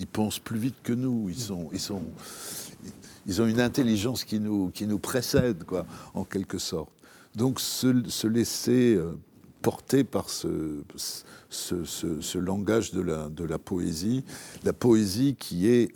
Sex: male